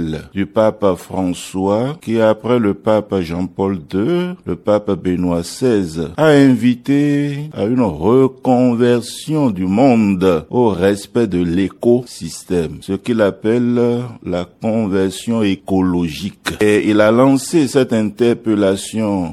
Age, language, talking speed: 50-69, French, 110 wpm